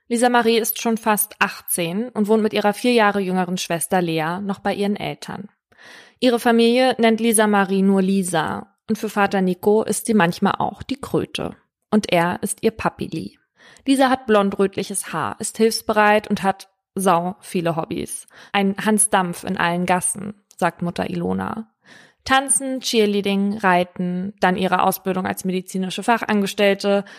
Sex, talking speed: female, 150 wpm